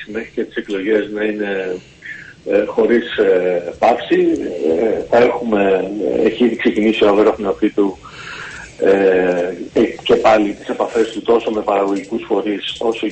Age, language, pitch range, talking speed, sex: 40-59, Greek, 100-130 Hz, 135 wpm, male